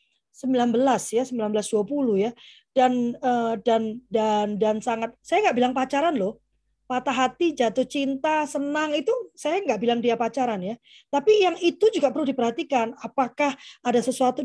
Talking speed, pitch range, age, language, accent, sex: 145 wpm, 220-285 Hz, 20-39, Indonesian, native, female